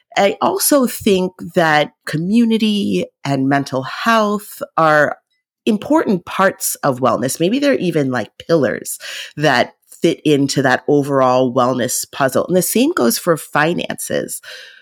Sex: female